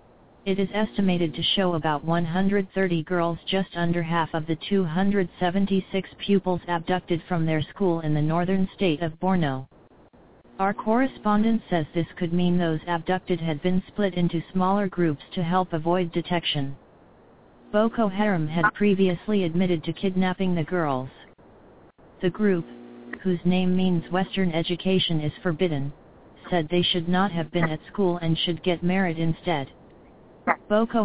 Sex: female